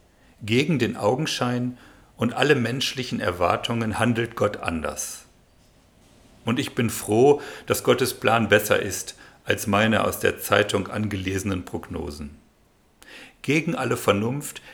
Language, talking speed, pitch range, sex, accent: German, 120 wpm, 100-130 Hz, male, German